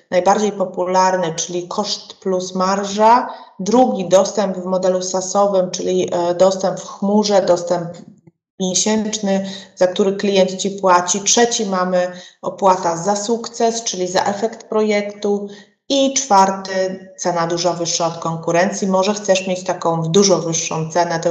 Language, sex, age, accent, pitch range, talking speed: Polish, female, 30-49, native, 180-220 Hz, 130 wpm